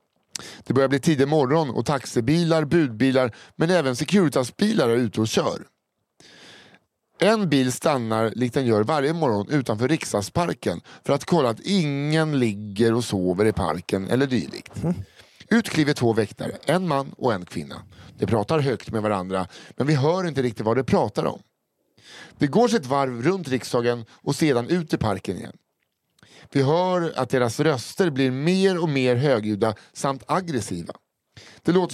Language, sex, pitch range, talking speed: Swedish, male, 120-170 Hz, 160 wpm